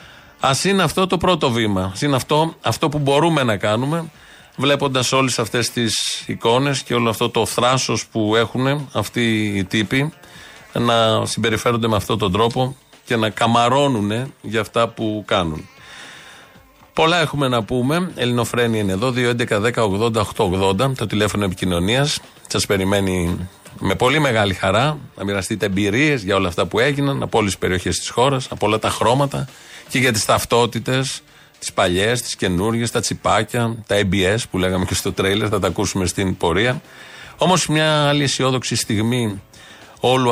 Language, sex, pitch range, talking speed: Greek, male, 100-135 Hz, 160 wpm